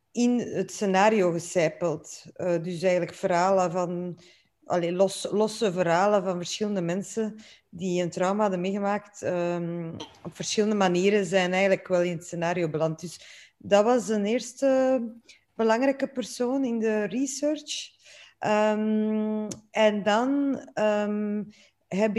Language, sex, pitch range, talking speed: Dutch, female, 180-215 Hz, 125 wpm